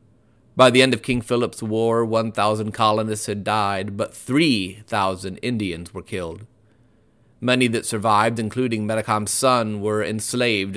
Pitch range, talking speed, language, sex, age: 100-115 Hz, 135 wpm, English, male, 30-49